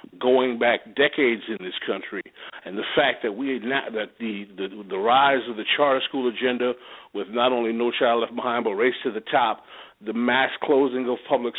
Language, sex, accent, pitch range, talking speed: English, male, American, 120-160 Hz, 205 wpm